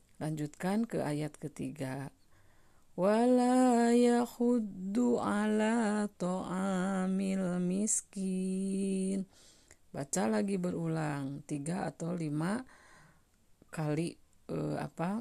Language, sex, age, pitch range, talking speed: Malay, female, 40-59, 165-215 Hz, 70 wpm